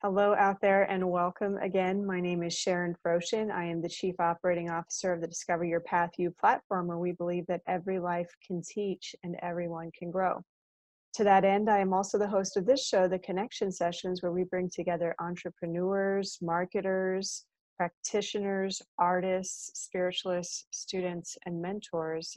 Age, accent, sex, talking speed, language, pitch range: 30-49, American, female, 170 wpm, English, 175-195 Hz